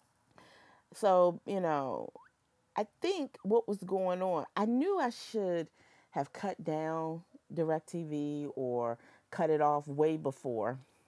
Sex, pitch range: female, 135-185 Hz